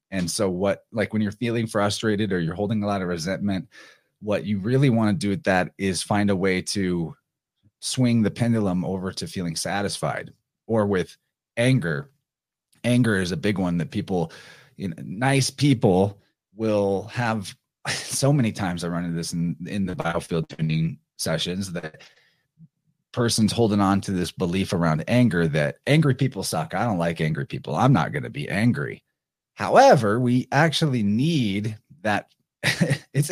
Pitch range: 90-125 Hz